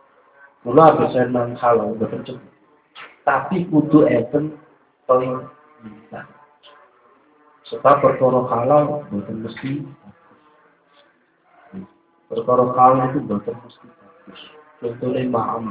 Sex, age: male, 50-69